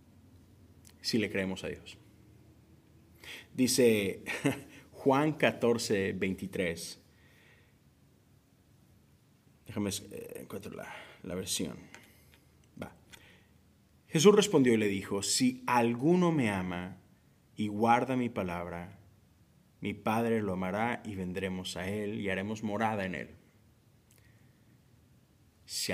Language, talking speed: Spanish, 100 wpm